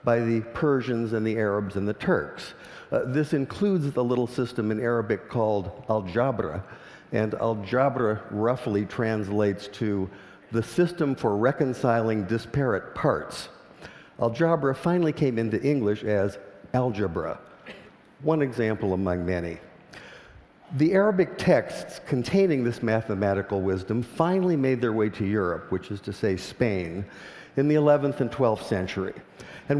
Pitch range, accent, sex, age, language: 105-140 Hz, American, male, 50-69, Korean